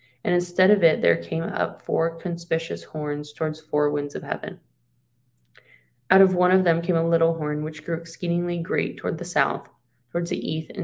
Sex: female